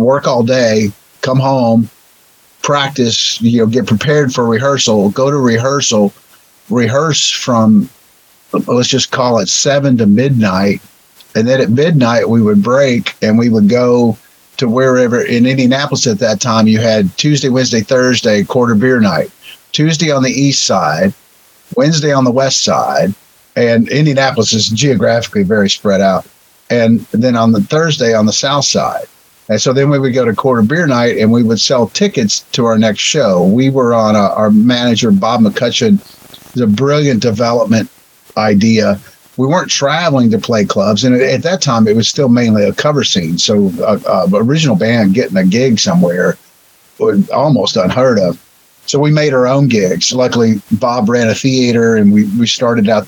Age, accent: 50-69, American